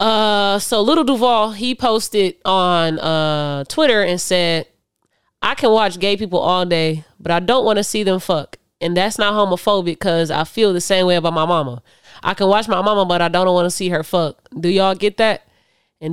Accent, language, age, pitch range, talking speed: American, English, 20-39, 160-205 Hz, 210 wpm